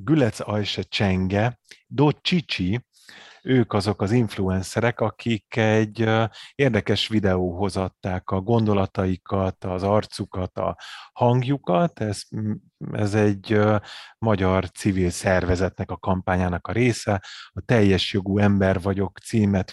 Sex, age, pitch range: male, 30-49, 95-110 Hz